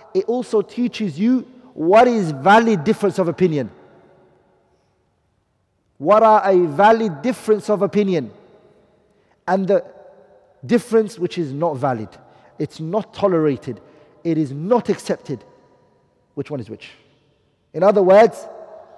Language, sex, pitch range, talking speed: English, male, 150-205 Hz, 120 wpm